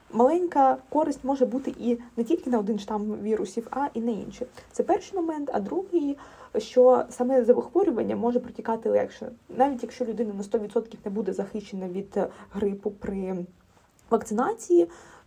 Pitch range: 200-245 Hz